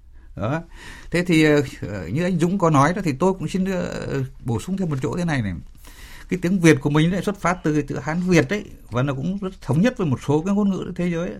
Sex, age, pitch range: male, 60-79, 125-195 Hz